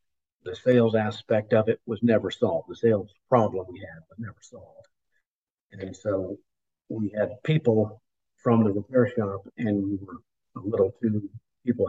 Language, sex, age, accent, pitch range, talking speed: English, male, 50-69, American, 105-120 Hz, 160 wpm